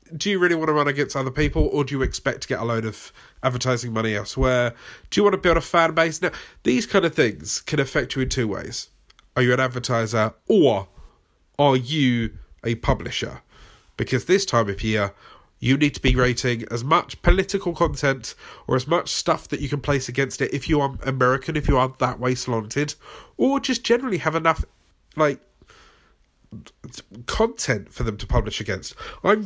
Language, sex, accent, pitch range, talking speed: English, male, British, 115-155 Hz, 195 wpm